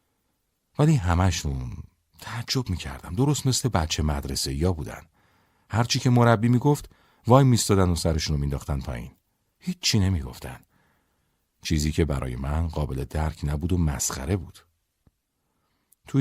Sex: male